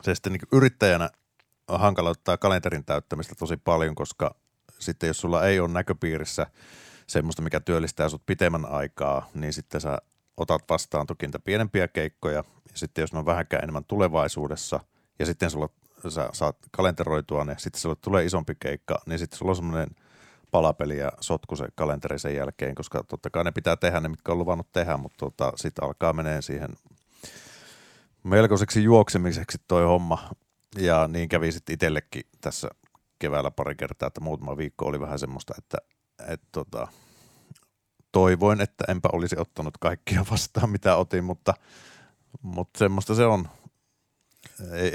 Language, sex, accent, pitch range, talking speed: Finnish, male, native, 75-95 Hz, 160 wpm